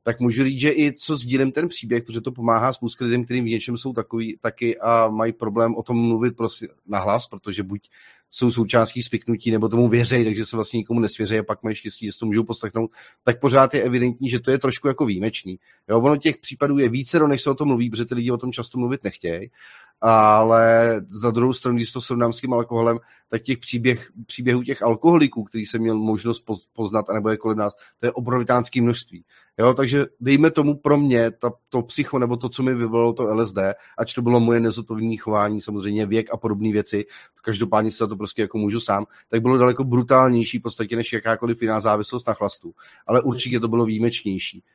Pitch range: 110-125 Hz